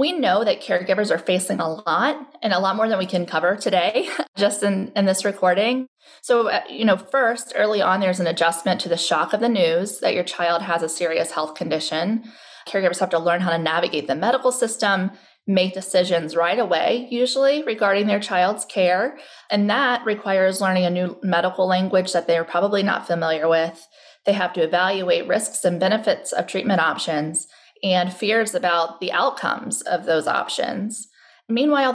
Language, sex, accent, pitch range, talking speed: English, female, American, 180-230 Hz, 185 wpm